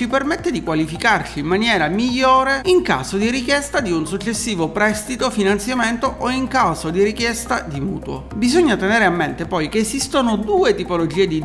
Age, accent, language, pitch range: 40-59, native, Italian, 180-250 Hz